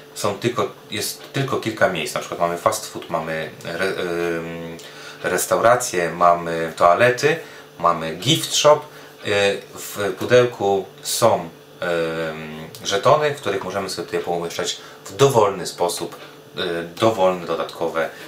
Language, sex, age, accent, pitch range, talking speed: Polish, male, 30-49, native, 85-115 Hz, 125 wpm